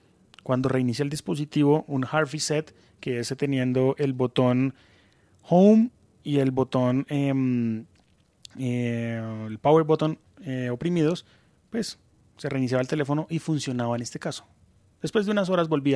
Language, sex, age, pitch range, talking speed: Spanish, male, 30-49, 125-150 Hz, 145 wpm